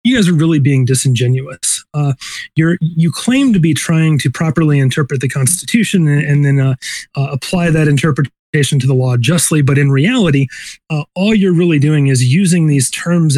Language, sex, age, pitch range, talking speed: English, male, 30-49, 135-160 Hz, 190 wpm